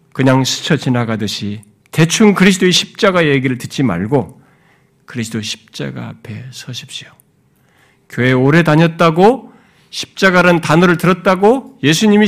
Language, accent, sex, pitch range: Korean, native, male, 125-205 Hz